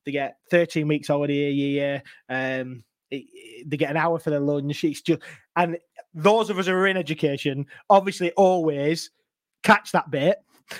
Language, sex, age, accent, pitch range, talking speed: English, male, 20-39, British, 150-170 Hz, 180 wpm